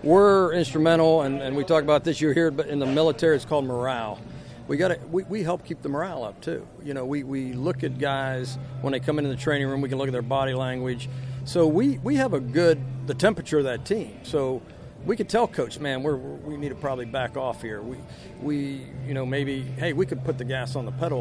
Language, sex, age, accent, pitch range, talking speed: English, male, 50-69, American, 130-160 Hz, 245 wpm